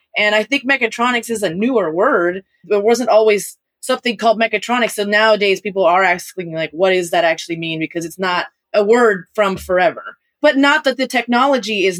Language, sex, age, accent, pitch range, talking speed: English, female, 20-39, American, 195-245 Hz, 190 wpm